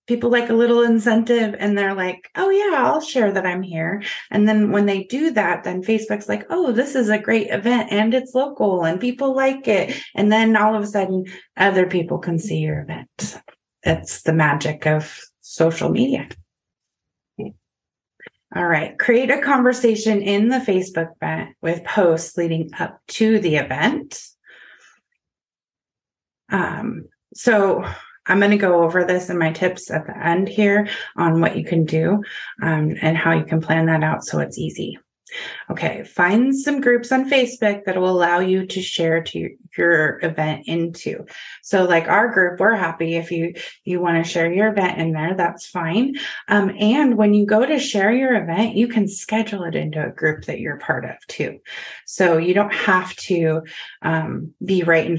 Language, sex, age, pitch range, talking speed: English, female, 30-49, 165-225 Hz, 180 wpm